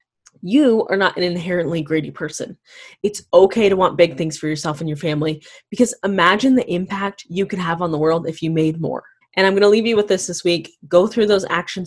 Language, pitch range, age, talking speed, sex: English, 155-185 Hz, 20-39, 235 wpm, female